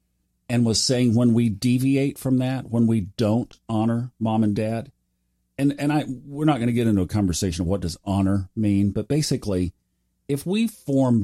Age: 40-59